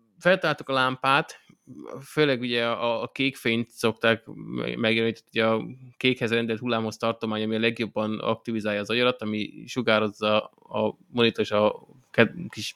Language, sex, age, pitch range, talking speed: Hungarian, male, 20-39, 110-125 Hz, 140 wpm